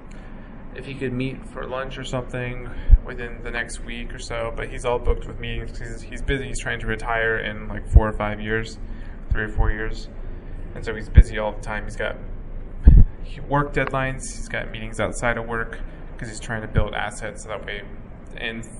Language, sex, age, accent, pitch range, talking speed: English, male, 20-39, American, 110-125 Hz, 200 wpm